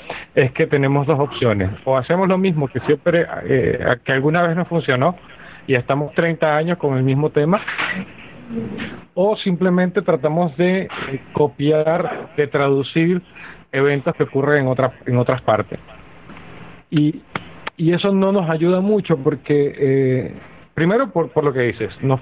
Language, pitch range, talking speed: Spanish, 135-170 Hz, 155 wpm